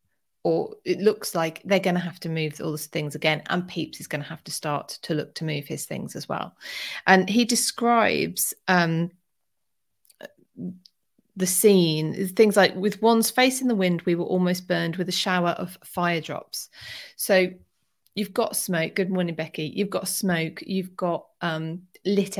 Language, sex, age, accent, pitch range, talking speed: English, female, 30-49, British, 170-220 Hz, 180 wpm